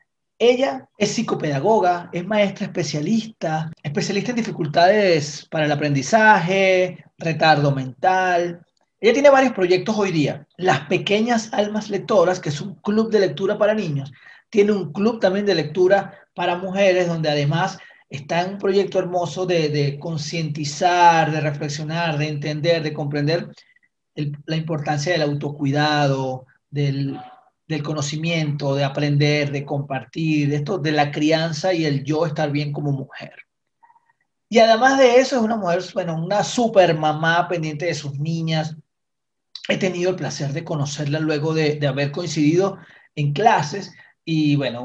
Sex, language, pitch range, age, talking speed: male, Spanish, 150-195 Hz, 30-49, 145 wpm